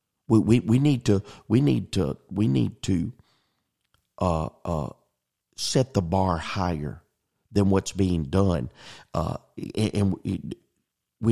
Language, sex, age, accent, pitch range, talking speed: English, male, 50-69, American, 90-110 Hz, 125 wpm